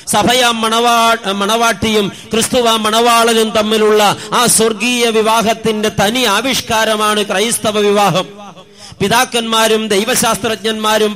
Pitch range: 205-230 Hz